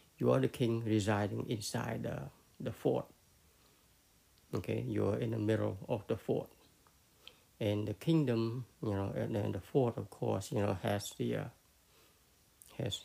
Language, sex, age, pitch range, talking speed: English, male, 60-79, 100-120 Hz, 160 wpm